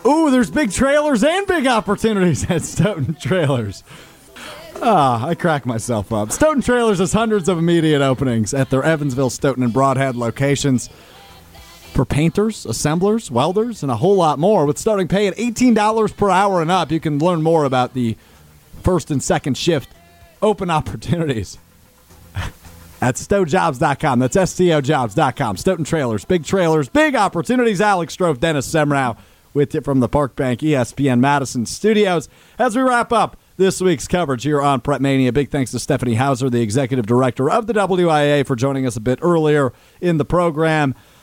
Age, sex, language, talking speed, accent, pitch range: 30-49, male, English, 165 wpm, American, 120-180 Hz